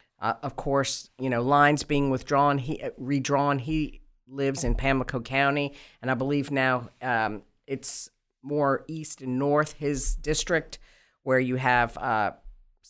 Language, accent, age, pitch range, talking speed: English, American, 50-69, 125-150 Hz, 145 wpm